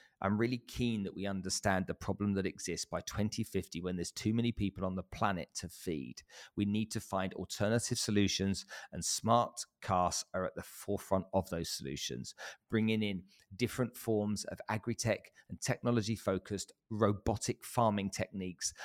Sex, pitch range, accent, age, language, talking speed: male, 95-115 Hz, British, 40-59, English, 155 wpm